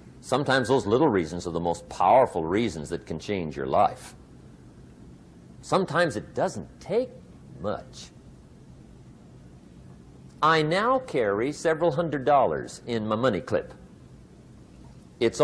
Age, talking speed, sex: 50-69, 115 wpm, male